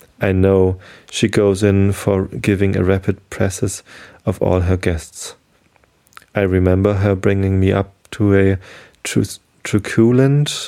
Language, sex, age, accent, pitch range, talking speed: German, male, 30-49, German, 90-105 Hz, 135 wpm